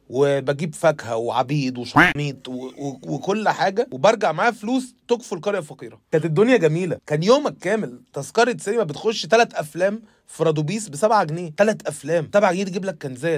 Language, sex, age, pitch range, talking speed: Arabic, male, 30-49, 165-230 Hz, 165 wpm